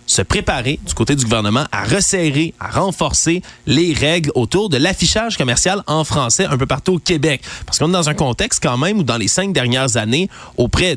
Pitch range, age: 125-170 Hz, 30-49